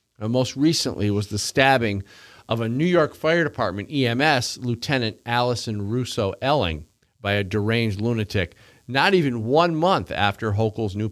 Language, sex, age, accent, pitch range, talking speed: English, male, 50-69, American, 105-135 Hz, 150 wpm